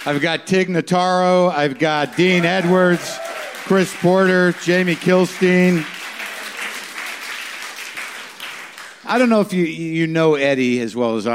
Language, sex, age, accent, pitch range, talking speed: English, male, 50-69, American, 125-175 Hz, 120 wpm